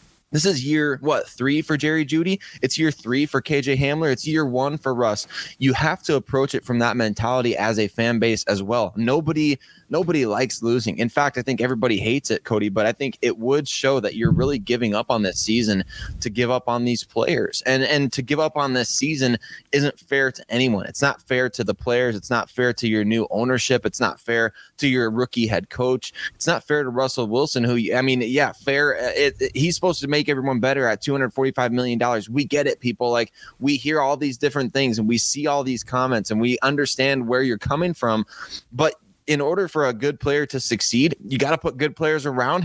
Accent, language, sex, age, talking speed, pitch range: American, English, male, 20-39, 220 wpm, 115-140 Hz